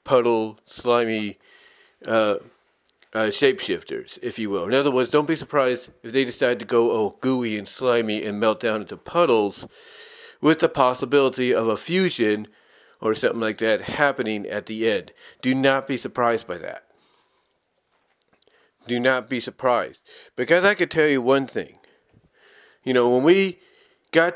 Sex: male